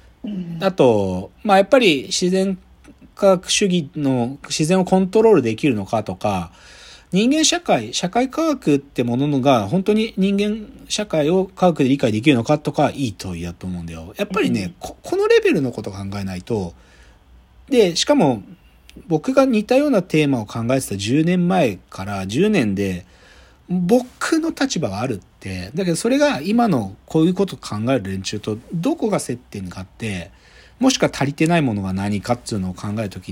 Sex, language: male, Japanese